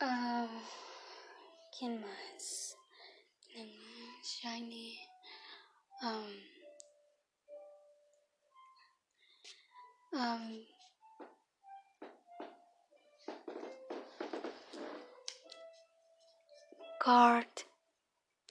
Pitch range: 230-375 Hz